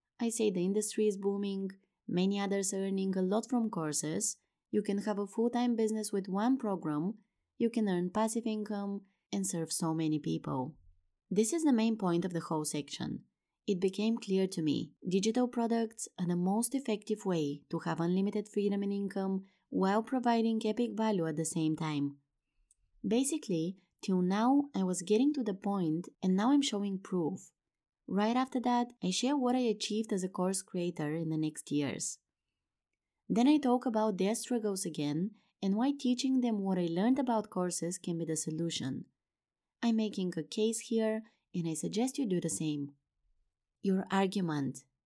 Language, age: English, 20-39